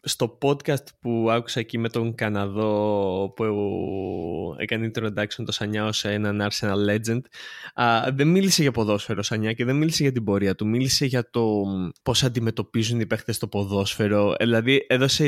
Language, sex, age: Greek, male, 20-39